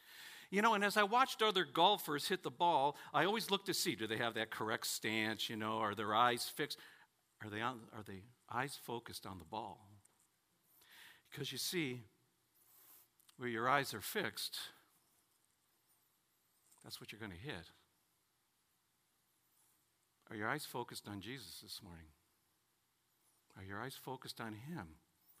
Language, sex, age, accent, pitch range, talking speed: English, male, 60-79, American, 110-150 Hz, 155 wpm